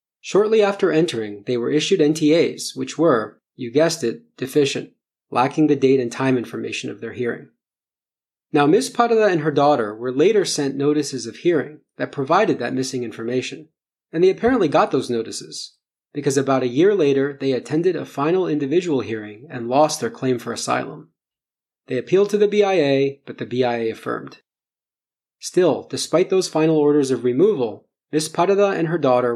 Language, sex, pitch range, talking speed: English, male, 125-160 Hz, 170 wpm